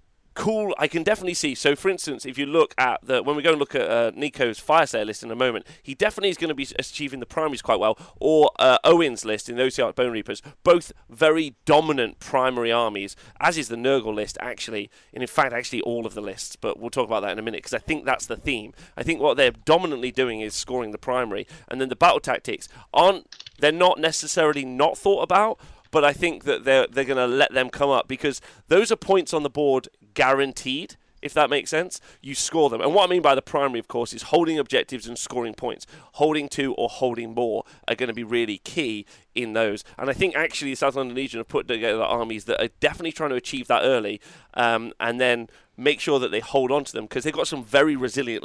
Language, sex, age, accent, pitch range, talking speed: English, male, 30-49, British, 115-150 Hz, 240 wpm